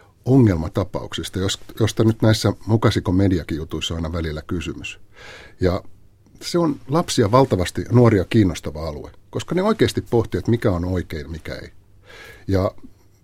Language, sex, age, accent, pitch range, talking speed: Finnish, male, 60-79, native, 90-115 Hz, 135 wpm